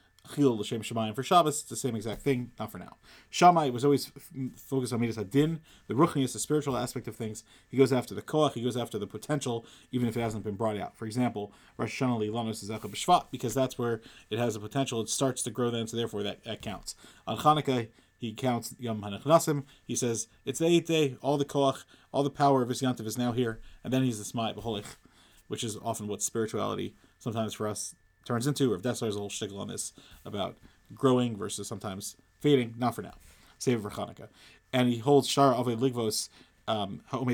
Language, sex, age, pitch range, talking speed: English, male, 30-49, 110-140 Hz, 205 wpm